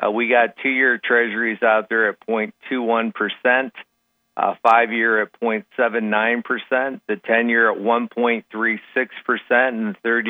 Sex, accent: male, American